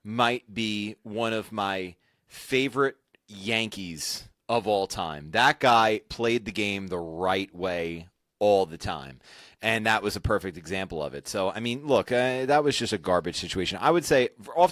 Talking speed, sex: 180 wpm, male